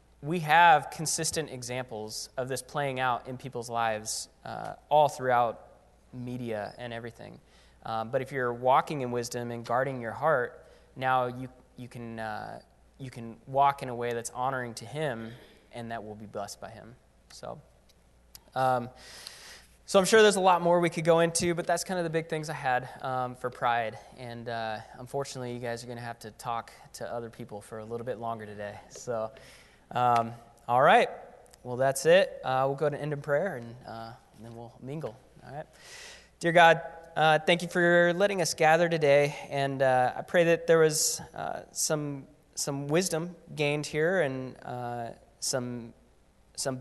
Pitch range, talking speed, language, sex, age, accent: 115-145 Hz, 185 wpm, English, male, 20-39, American